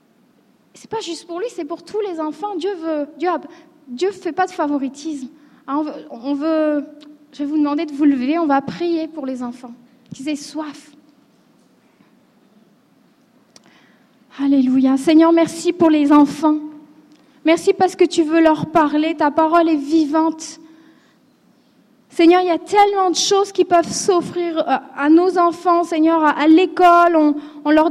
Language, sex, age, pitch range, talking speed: French, female, 30-49, 285-345 Hz, 160 wpm